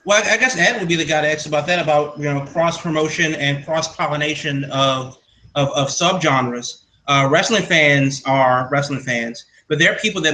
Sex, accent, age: male, American, 30-49